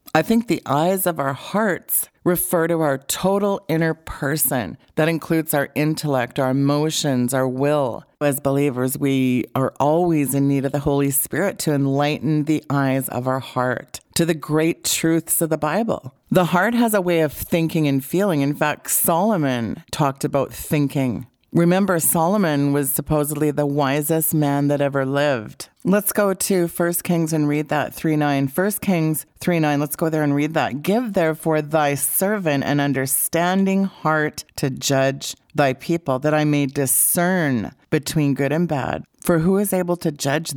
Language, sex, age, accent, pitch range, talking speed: English, female, 40-59, American, 140-170 Hz, 170 wpm